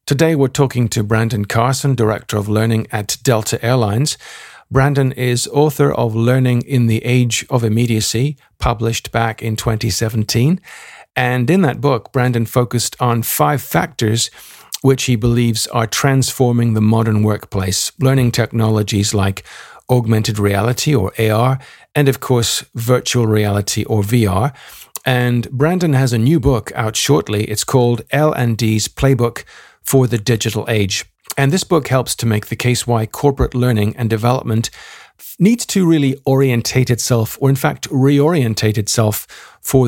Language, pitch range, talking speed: English, 110-135 Hz, 145 wpm